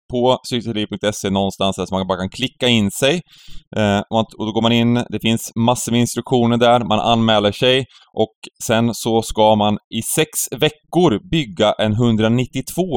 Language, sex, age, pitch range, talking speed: Swedish, male, 20-39, 100-145 Hz, 170 wpm